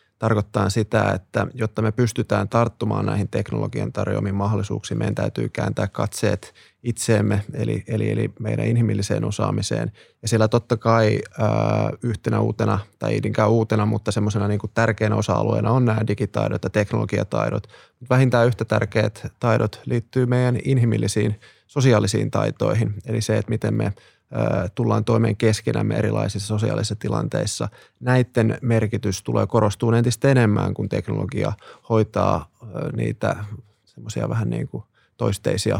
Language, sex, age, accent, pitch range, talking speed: Finnish, male, 20-39, native, 105-120 Hz, 130 wpm